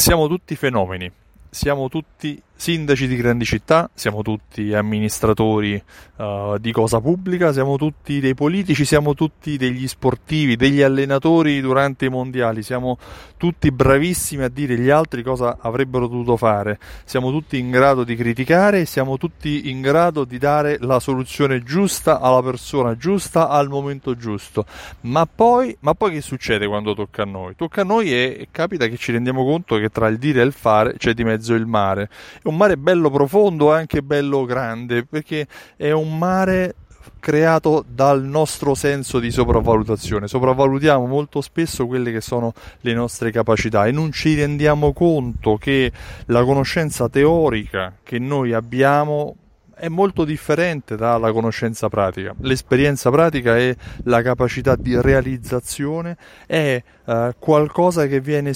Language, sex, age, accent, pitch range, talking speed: Italian, male, 30-49, native, 115-150 Hz, 155 wpm